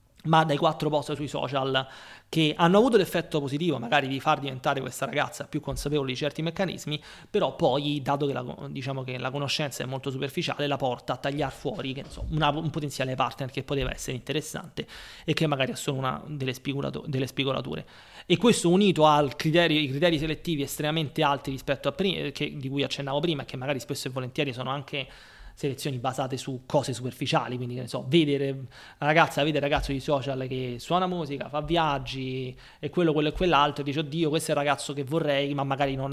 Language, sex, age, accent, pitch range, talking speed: Italian, male, 30-49, native, 135-155 Hz, 205 wpm